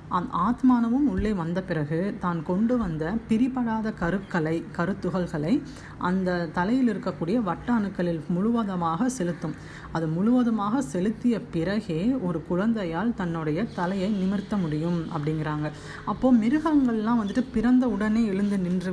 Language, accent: Tamil, native